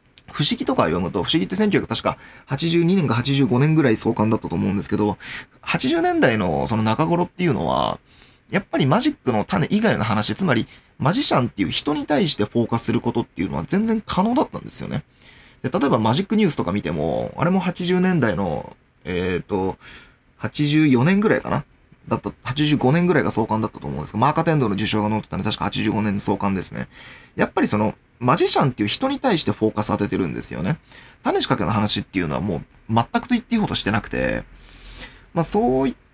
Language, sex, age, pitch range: Japanese, male, 20-39, 105-175 Hz